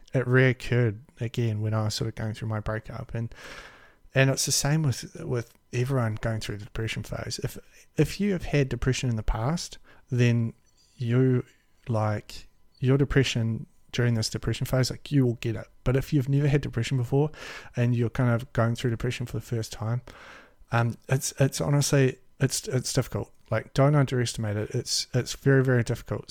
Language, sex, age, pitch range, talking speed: English, male, 30-49, 115-140 Hz, 185 wpm